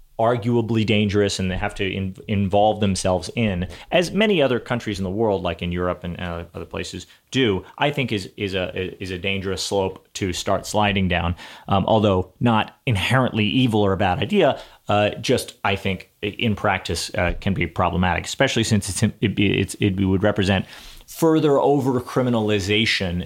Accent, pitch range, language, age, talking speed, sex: American, 95-120 Hz, English, 30-49, 170 wpm, male